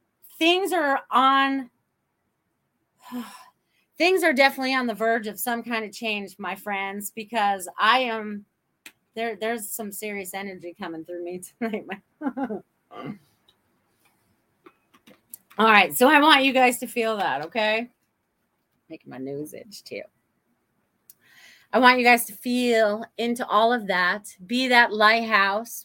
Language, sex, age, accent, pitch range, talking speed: English, female, 30-49, American, 210-285 Hz, 130 wpm